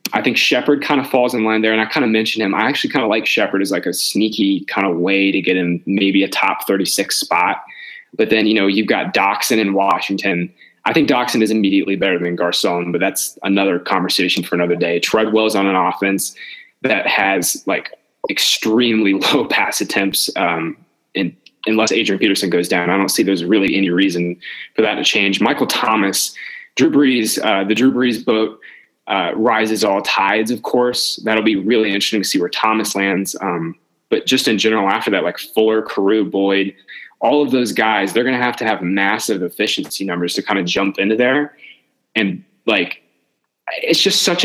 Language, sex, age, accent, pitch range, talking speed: English, male, 20-39, American, 95-120 Hz, 200 wpm